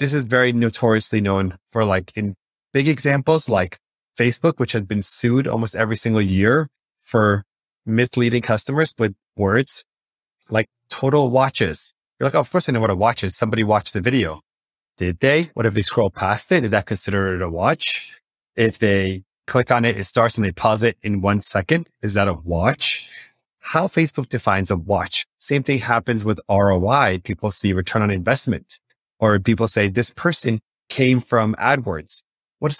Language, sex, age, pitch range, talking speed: English, male, 30-49, 105-140 Hz, 185 wpm